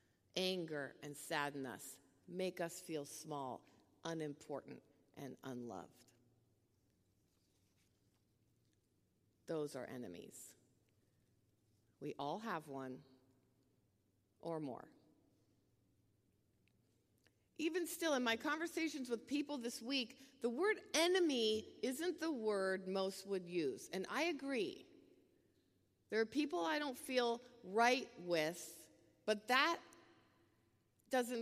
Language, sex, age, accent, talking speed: English, female, 50-69, American, 95 wpm